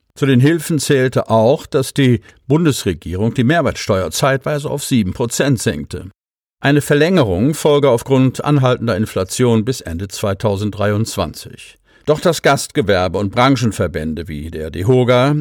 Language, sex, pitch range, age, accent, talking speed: German, male, 100-135 Hz, 50-69, German, 125 wpm